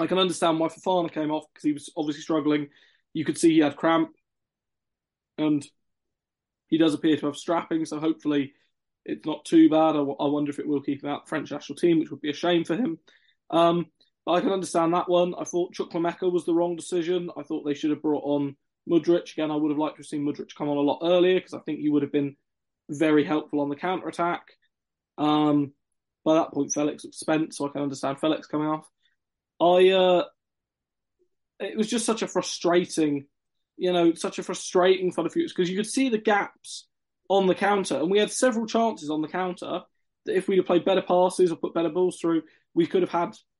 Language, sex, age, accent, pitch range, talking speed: English, male, 20-39, British, 150-180 Hz, 225 wpm